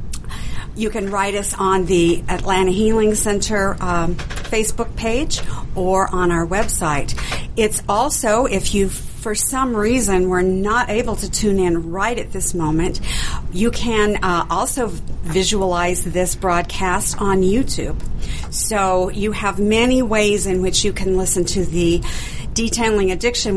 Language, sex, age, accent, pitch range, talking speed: English, female, 50-69, American, 175-215 Hz, 145 wpm